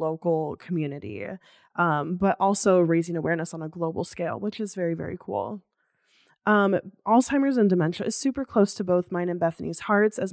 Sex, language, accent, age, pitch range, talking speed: female, English, American, 20-39, 170-200 Hz, 175 wpm